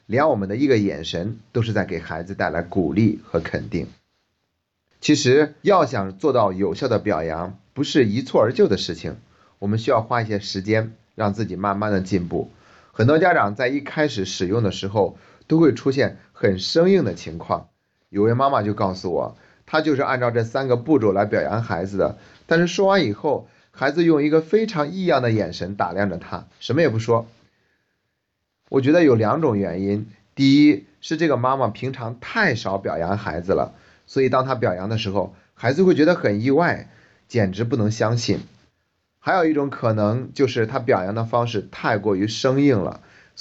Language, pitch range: Chinese, 100-130 Hz